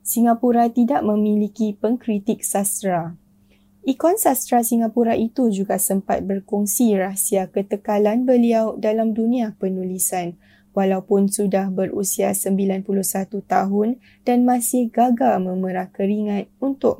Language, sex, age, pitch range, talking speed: Malay, female, 10-29, 190-230 Hz, 100 wpm